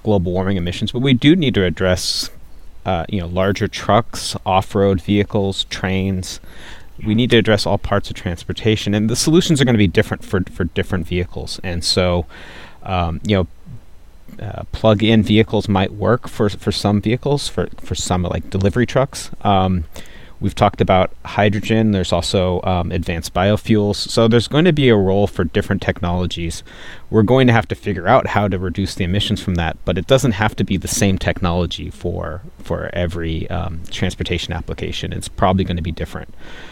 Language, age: English, 30-49